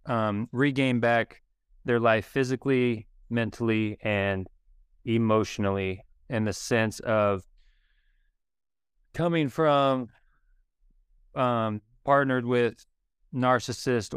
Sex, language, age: male, English, 20-39